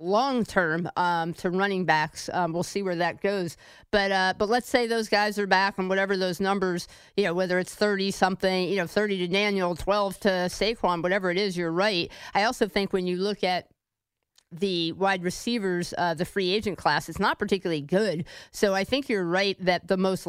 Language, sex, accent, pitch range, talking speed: English, female, American, 175-205 Hz, 210 wpm